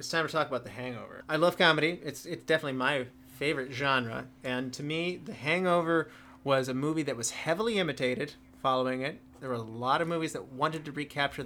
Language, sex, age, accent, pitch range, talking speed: English, male, 30-49, American, 125-150 Hz, 210 wpm